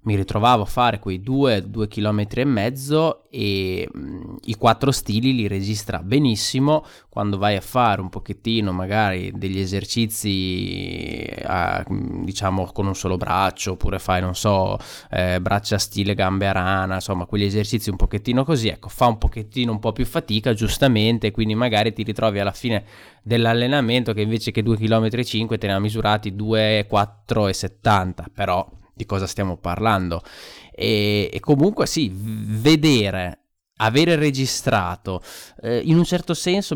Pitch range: 100-120 Hz